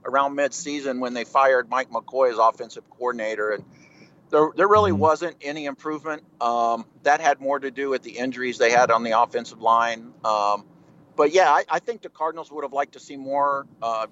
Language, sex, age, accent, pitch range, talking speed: English, male, 50-69, American, 125-155 Hz, 200 wpm